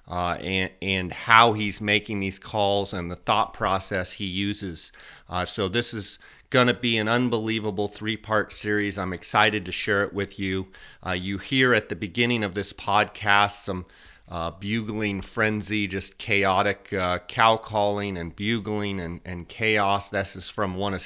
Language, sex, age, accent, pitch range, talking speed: English, male, 30-49, American, 90-105 Hz, 170 wpm